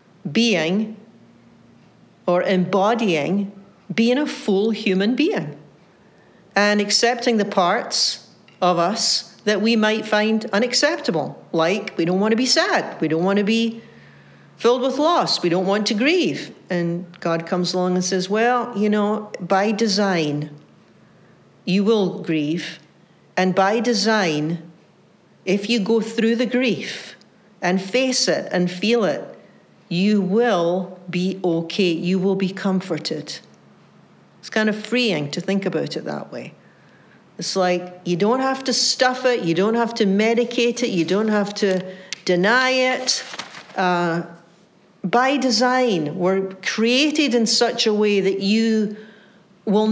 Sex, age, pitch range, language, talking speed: female, 60-79, 180-230 Hz, English, 140 wpm